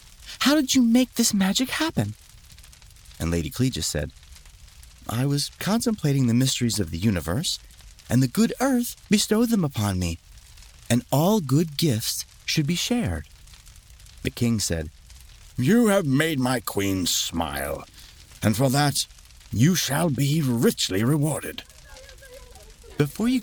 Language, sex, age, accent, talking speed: English, male, 30-49, American, 135 wpm